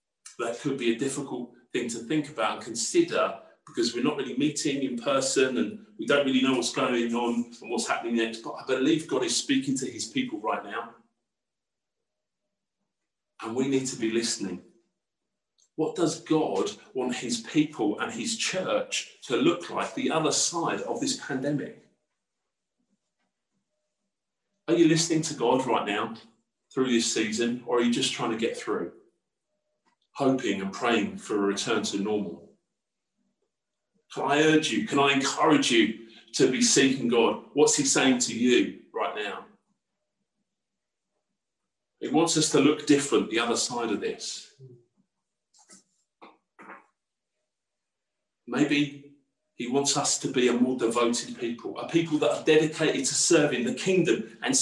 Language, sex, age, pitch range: English, male, 40-59, 120-170 Hz